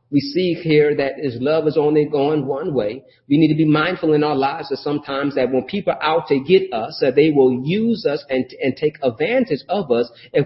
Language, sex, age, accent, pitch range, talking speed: English, male, 40-59, American, 135-180 Hz, 235 wpm